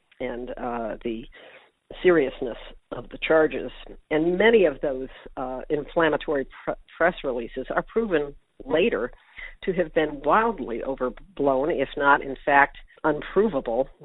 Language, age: English, 50-69